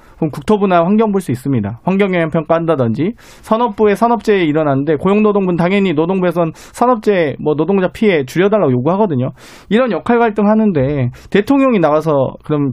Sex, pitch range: male, 135-195 Hz